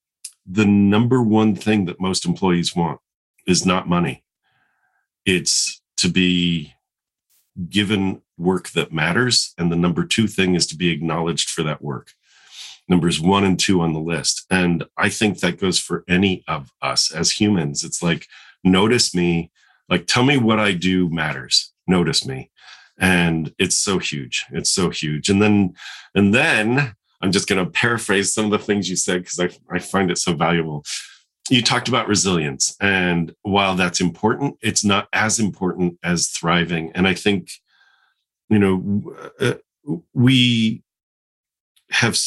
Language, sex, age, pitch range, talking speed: English, male, 40-59, 85-105 Hz, 160 wpm